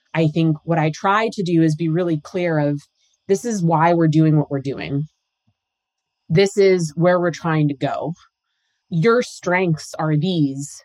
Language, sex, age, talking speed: English, female, 20-39, 170 wpm